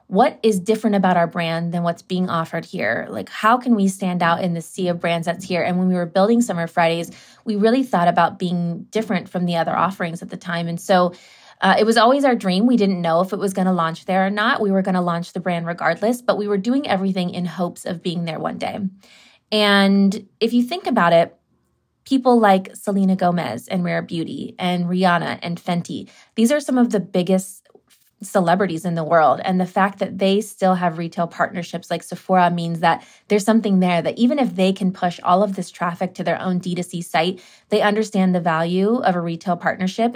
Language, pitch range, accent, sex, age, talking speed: English, 175-205 Hz, American, female, 20-39, 225 wpm